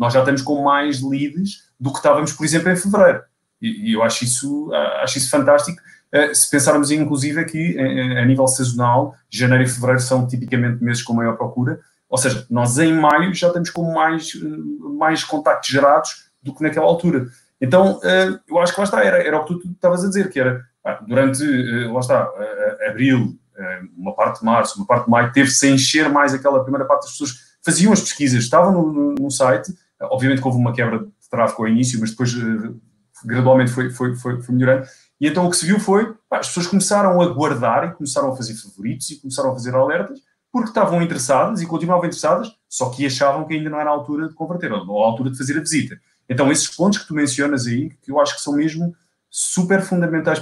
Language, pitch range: Portuguese, 130-175 Hz